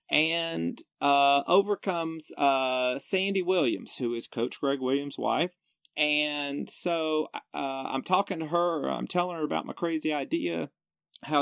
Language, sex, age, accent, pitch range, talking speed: English, male, 40-59, American, 120-160 Hz, 140 wpm